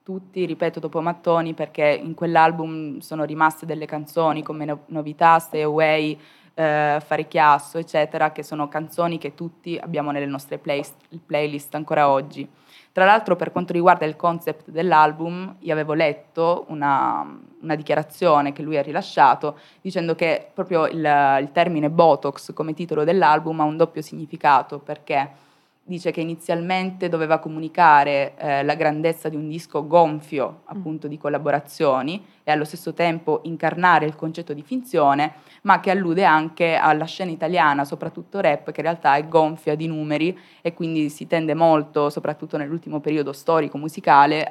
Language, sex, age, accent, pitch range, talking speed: Italian, female, 20-39, native, 150-165 Hz, 150 wpm